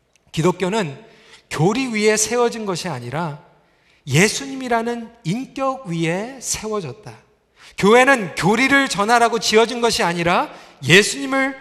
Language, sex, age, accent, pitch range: Korean, male, 40-59, native, 190-275 Hz